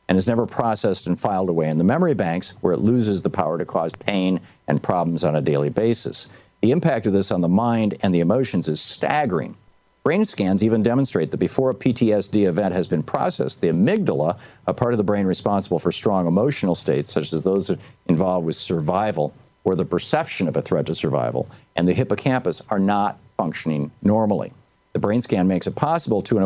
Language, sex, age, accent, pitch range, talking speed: English, male, 50-69, American, 90-115 Hz, 205 wpm